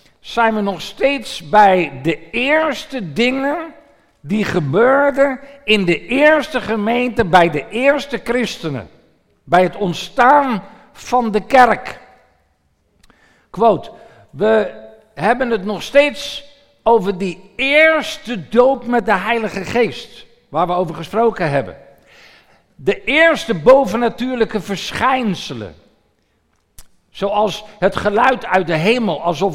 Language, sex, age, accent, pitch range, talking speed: Dutch, male, 60-79, Dutch, 180-240 Hz, 110 wpm